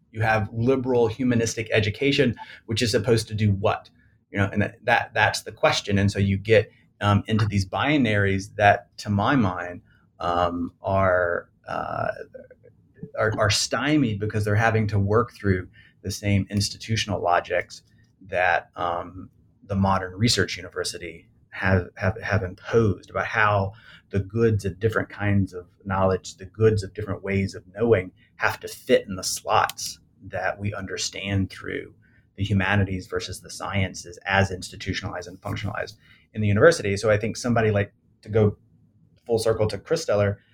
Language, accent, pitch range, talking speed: English, American, 100-120 Hz, 160 wpm